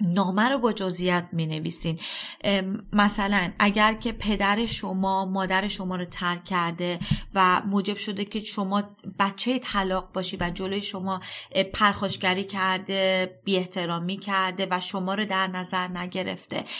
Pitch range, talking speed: 180-200 Hz, 130 wpm